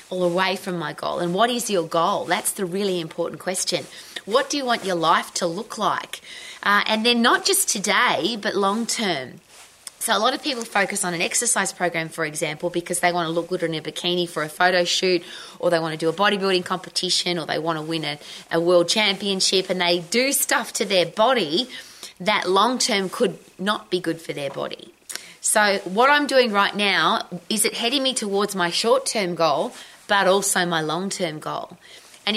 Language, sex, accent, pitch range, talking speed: English, female, Australian, 170-215 Hz, 205 wpm